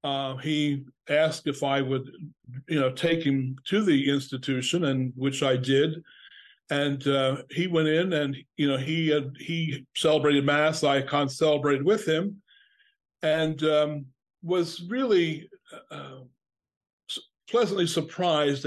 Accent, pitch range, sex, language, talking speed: American, 140-160 Hz, male, English, 130 wpm